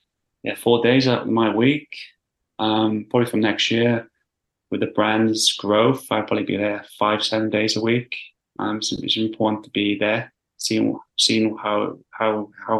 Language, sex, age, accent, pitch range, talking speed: English, male, 20-39, British, 105-115 Hz, 165 wpm